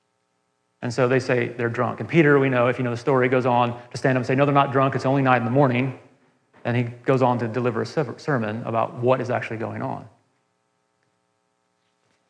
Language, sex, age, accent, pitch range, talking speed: English, male, 30-49, American, 110-135 Hz, 225 wpm